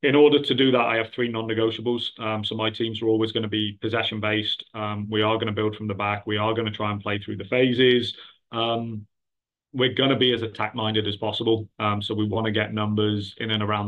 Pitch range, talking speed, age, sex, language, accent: 105-115 Hz, 255 wpm, 30-49, male, English, British